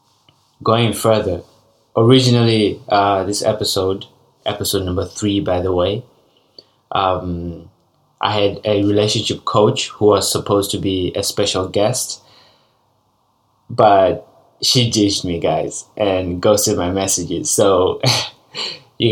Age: 20-39